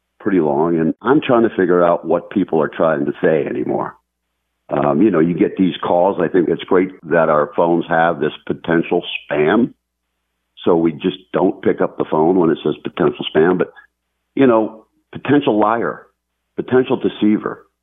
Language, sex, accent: English, male, American